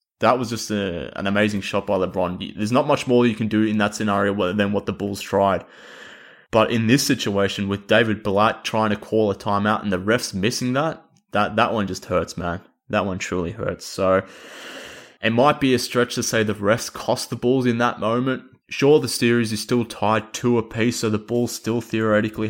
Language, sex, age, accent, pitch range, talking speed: English, male, 20-39, Australian, 100-115 Hz, 210 wpm